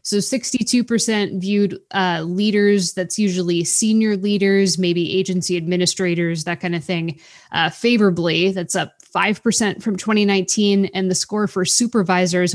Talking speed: 135 wpm